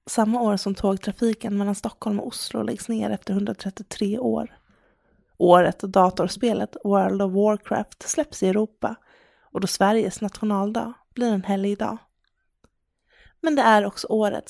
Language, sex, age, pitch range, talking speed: English, female, 20-39, 200-230 Hz, 145 wpm